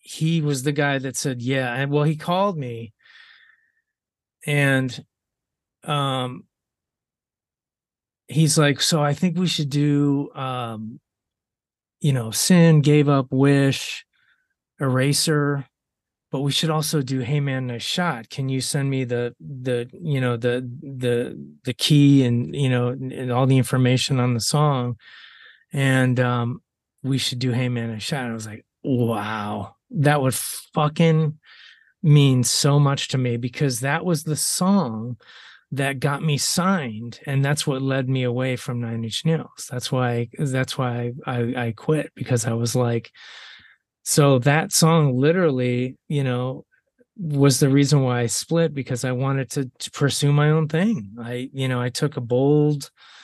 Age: 20-39